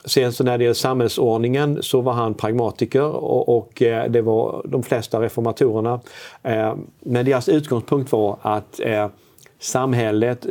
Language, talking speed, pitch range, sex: Swedish, 130 wpm, 105-125 Hz, male